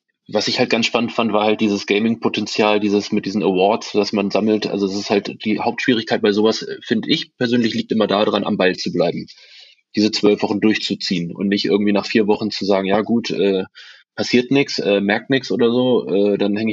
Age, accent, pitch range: 20-39, German, 100-115 Hz